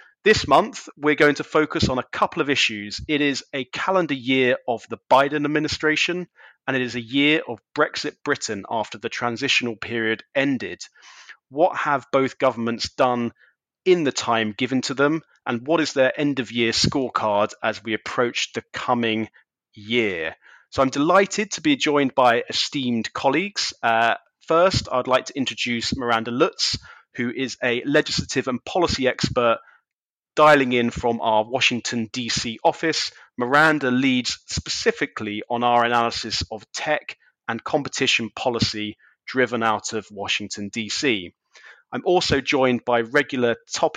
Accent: British